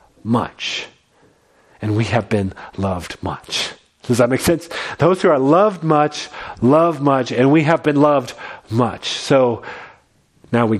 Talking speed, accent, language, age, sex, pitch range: 150 wpm, American, English, 40-59, male, 120-155 Hz